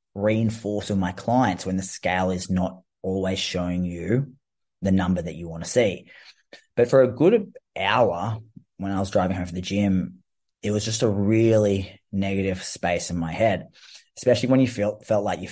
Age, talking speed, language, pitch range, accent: 20-39, 190 wpm, English, 95-110 Hz, Australian